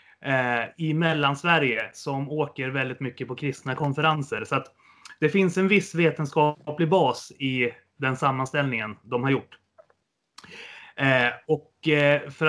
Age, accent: 30-49, native